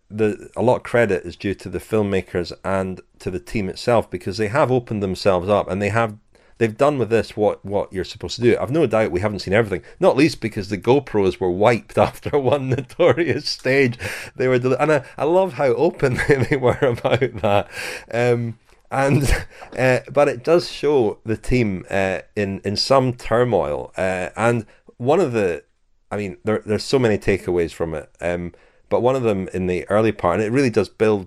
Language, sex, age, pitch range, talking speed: English, male, 40-59, 90-120 Hz, 205 wpm